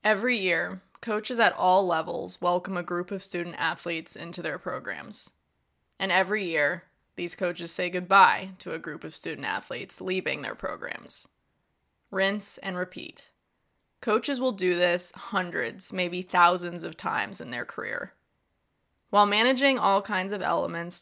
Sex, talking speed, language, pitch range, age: female, 150 wpm, English, 175-200 Hz, 20-39